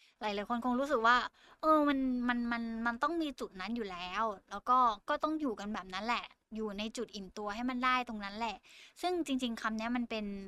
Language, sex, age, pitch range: Thai, female, 10-29, 205-255 Hz